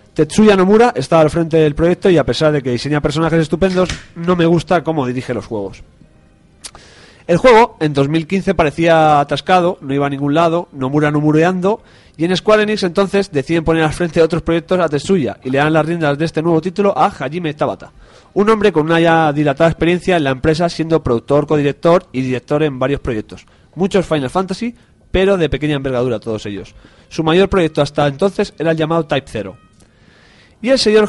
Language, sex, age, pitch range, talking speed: Spanish, male, 30-49, 135-170 Hz, 195 wpm